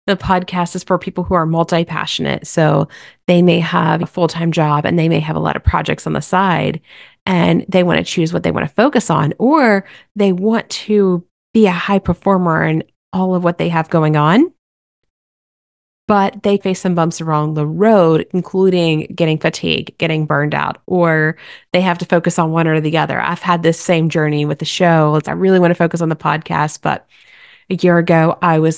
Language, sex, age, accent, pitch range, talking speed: English, female, 30-49, American, 160-195 Hz, 205 wpm